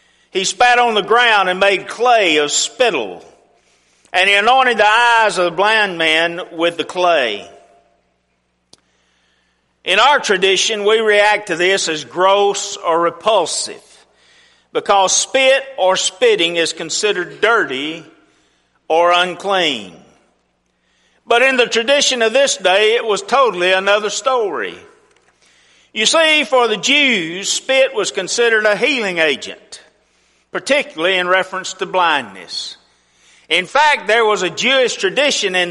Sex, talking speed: male, 130 wpm